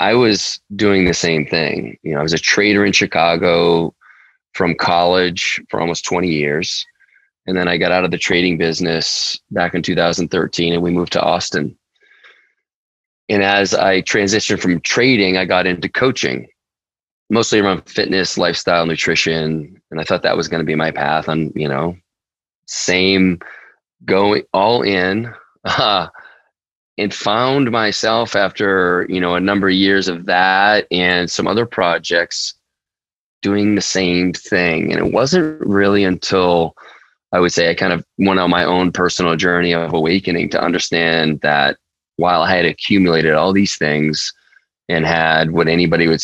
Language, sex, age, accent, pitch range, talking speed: English, male, 20-39, American, 85-100 Hz, 160 wpm